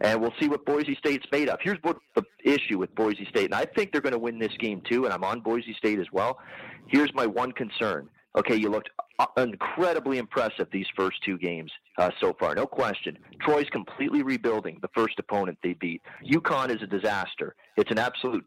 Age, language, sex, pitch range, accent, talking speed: 40-59, English, male, 105-135 Hz, American, 210 wpm